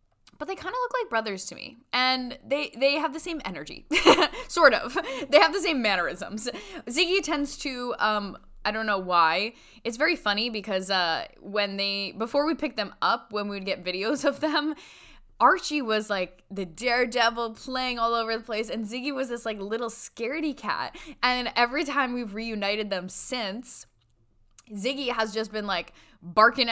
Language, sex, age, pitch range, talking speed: English, female, 10-29, 185-250 Hz, 180 wpm